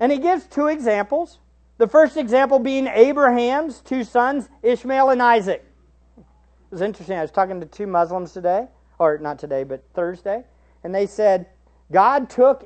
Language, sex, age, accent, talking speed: English, male, 50-69, American, 165 wpm